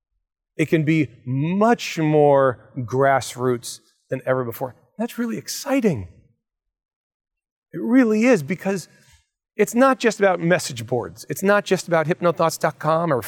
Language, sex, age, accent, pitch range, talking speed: English, male, 40-59, American, 130-165 Hz, 125 wpm